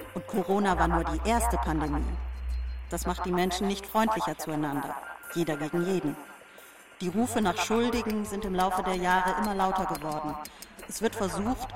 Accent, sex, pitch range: German, female, 150-200 Hz